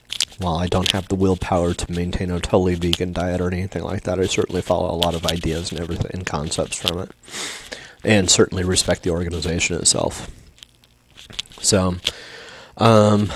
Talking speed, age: 165 wpm, 30-49